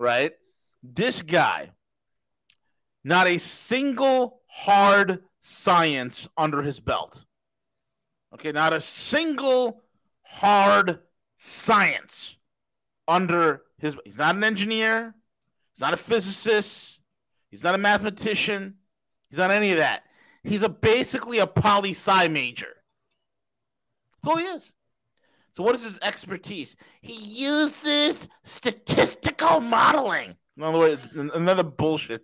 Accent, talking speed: American, 110 wpm